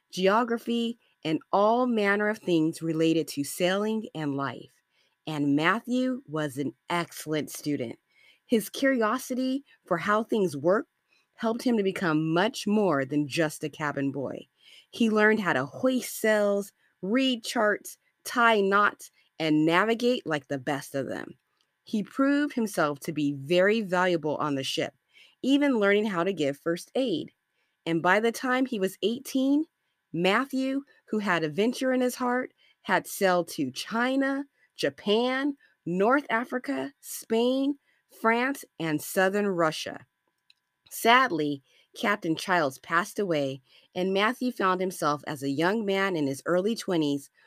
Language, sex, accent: English, female, American